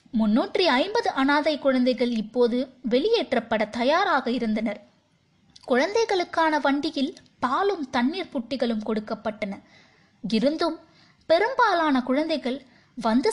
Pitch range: 235-315 Hz